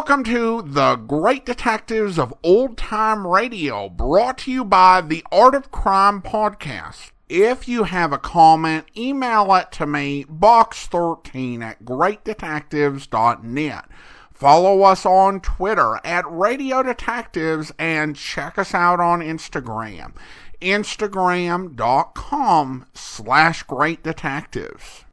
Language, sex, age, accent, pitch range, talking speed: English, male, 50-69, American, 150-225 Hz, 110 wpm